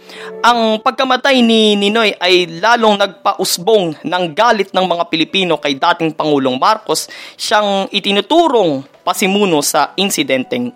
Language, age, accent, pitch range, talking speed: Filipino, 20-39, native, 155-215 Hz, 115 wpm